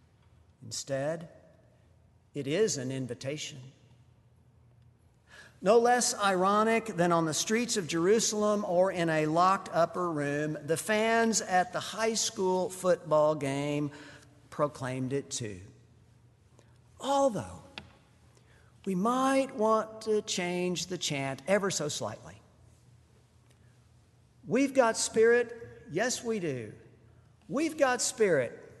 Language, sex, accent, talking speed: English, male, American, 105 wpm